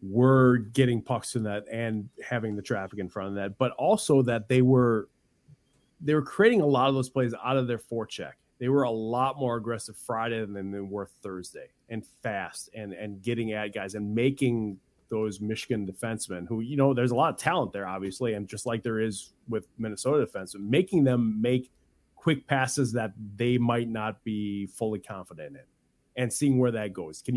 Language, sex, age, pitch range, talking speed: English, male, 30-49, 105-130 Hz, 195 wpm